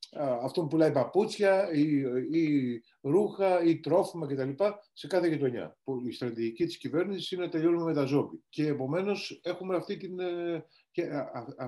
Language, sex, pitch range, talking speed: Greek, male, 120-160 Hz, 160 wpm